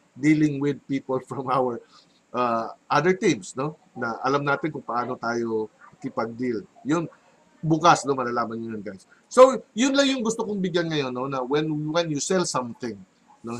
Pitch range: 130-165 Hz